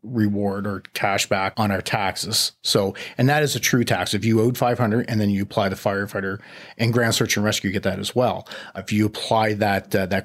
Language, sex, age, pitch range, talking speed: English, male, 30-49, 100-115 Hz, 235 wpm